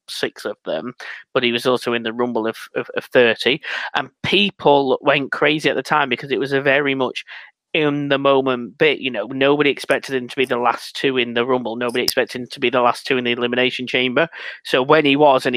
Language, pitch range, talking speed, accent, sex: English, 120-140 Hz, 235 wpm, British, male